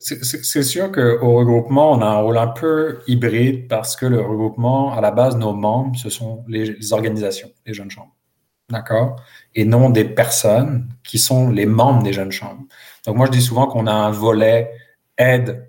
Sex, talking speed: male, 185 wpm